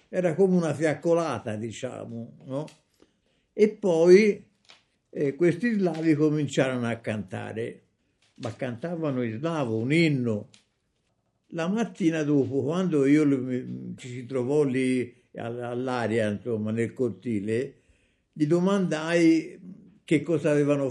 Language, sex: Italian, male